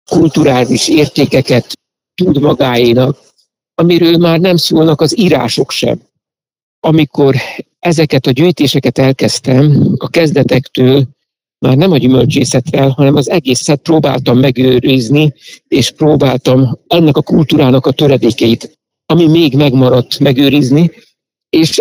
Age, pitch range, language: 60-79, 130-155 Hz, Hungarian